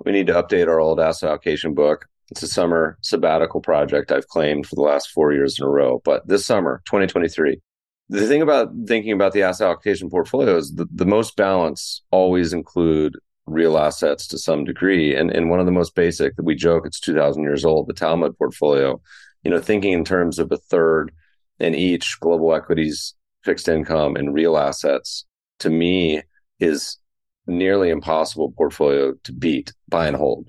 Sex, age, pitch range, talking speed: male, 30-49, 80-90 Hz, 185 wpm